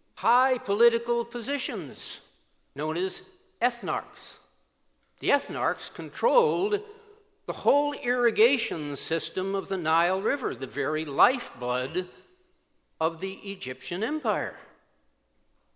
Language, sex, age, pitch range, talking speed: English, male, 60-79, 140-210 Hz, 90 wpm